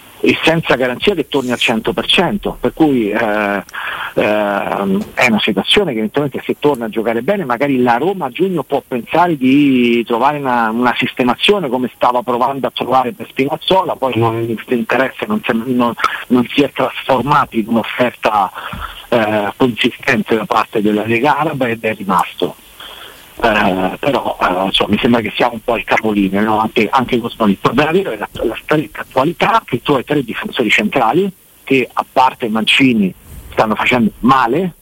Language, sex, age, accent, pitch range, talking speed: Italian, male, 50-69, native, 110-140 Hz, 175 wpm